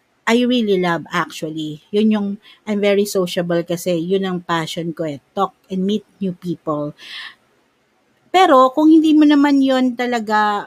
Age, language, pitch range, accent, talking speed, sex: 50-69, Filipino, 170-245 Hz, native, 150 wpm, female